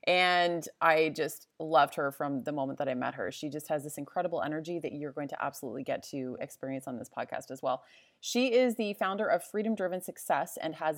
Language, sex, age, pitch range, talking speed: English, female, 30-49, 155-195 Hz, 225 wpm